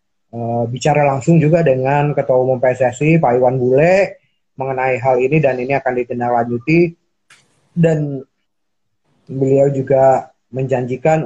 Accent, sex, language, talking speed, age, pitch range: native, male, Indonesian, 115 wpm, 20-39, 120-150 Hz